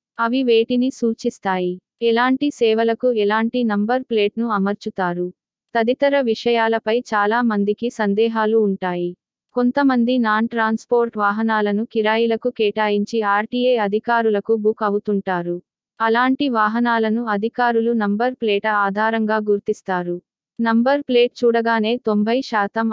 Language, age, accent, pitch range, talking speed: Telugu, 20-39, native, 210-235 Hz, 95 wpm